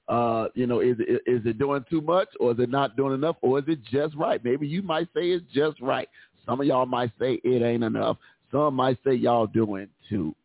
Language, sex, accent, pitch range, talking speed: English, male, American, 120-145 Hz, 235 wpm